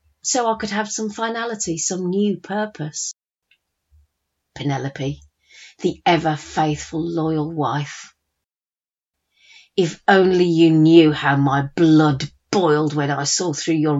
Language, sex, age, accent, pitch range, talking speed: English, female, 40-59, British, 140-200 Hz, 115 wpm